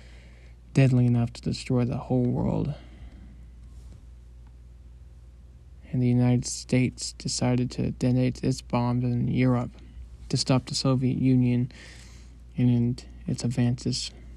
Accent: American